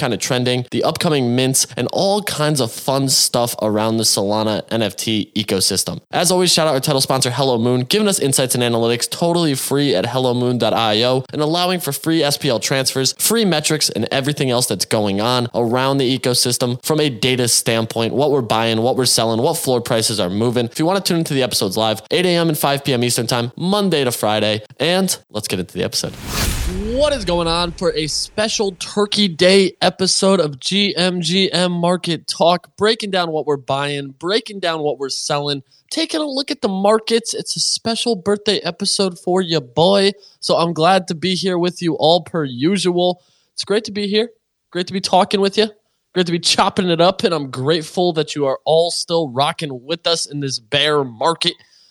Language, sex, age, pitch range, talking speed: English, male, 20-39, 125-185 Hz, 200 wpm